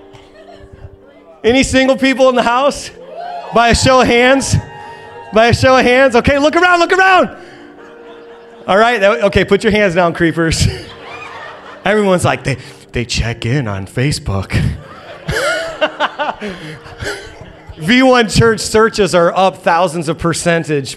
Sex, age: male, 30-49